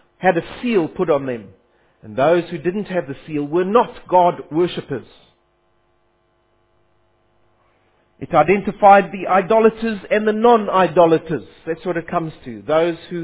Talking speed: 140 wpm